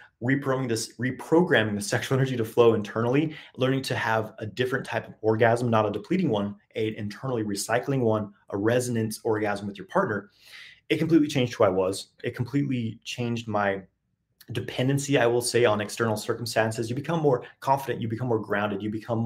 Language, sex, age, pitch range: English, male, 30-49, 105-130 Hz